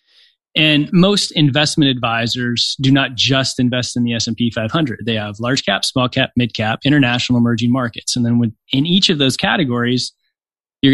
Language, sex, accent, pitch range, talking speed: English, male, American, 125-160 Hz, 170 wpm